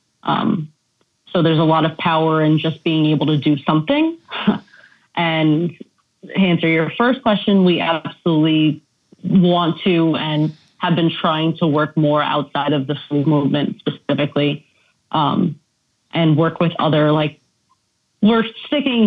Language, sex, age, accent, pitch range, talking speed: English, female, 30-49, American, 150-175 Hz, 140 wpm